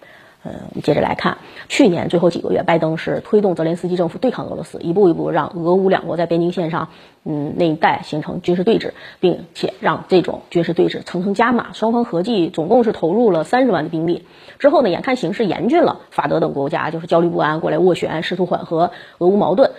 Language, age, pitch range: Chinese, 30-49, 170-225 Hz